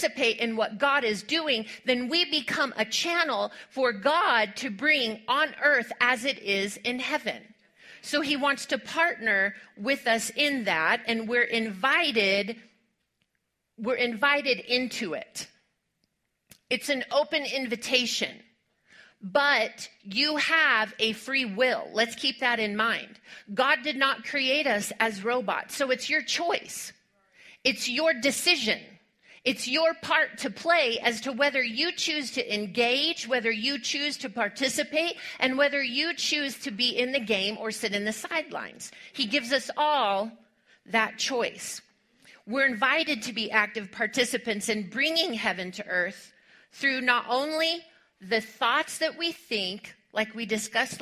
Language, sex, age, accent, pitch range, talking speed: English, female, 40-59, American, 220-285 Hz, 145 wpm